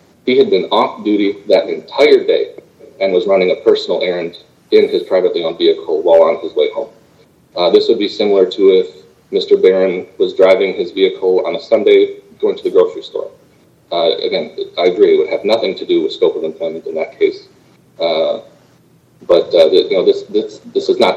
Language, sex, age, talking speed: English, male, 30-49, 205 wpm